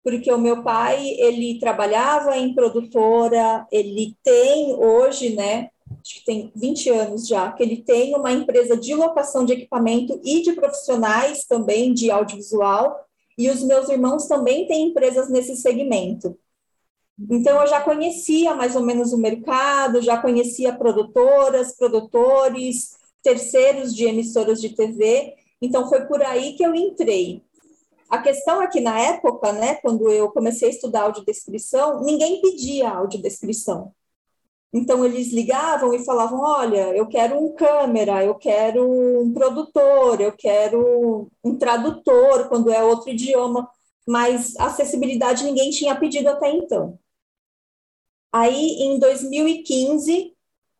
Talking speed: 135 wpm